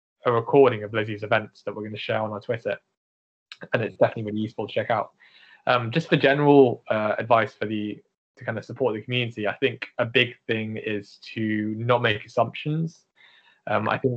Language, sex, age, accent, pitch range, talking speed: English, male, 10-29, British, 105-125 Hz, 205 wpm